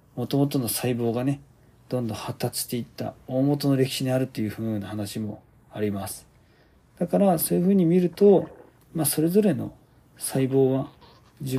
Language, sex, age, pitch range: Japanese, male, 40-59, 115-145 Hz